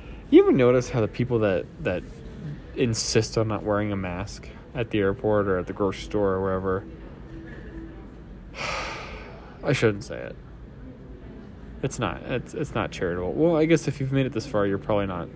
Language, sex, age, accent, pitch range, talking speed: English, male, 20-39, American, 90-130 Hz, 180 wpm